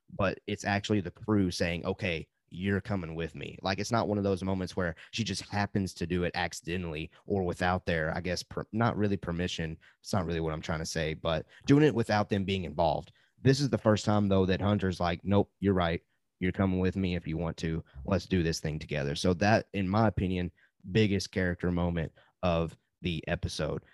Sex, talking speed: male, 215 wpm